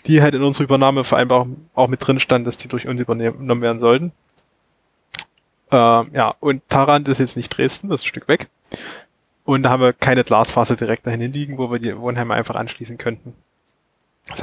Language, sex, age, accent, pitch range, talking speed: German, male, 20-39, German, 120-135 Hz, 195 wpm